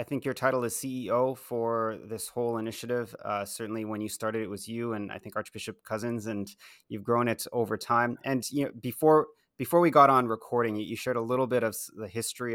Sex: male